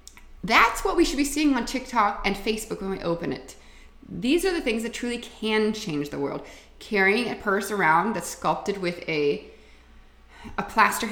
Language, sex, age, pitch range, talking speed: English, female, 30-49, 180-245 Hz, 185 wpm